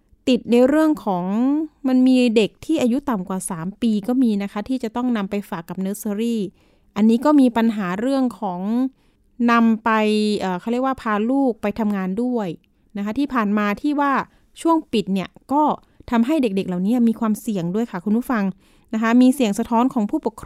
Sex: female